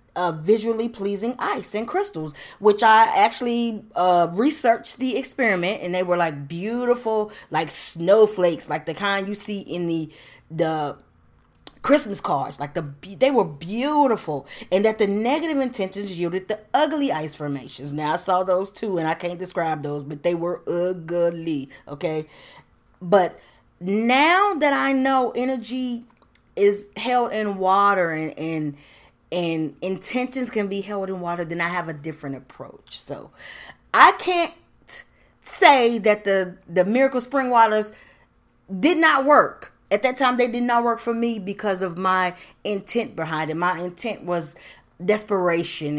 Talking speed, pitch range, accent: 155 wpm, 165-230 Hz, American